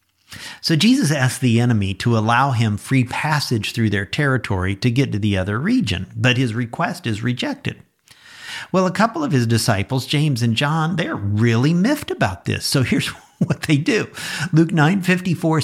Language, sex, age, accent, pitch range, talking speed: English, male, 50-69, American, 115-170 Hz, 175 wpm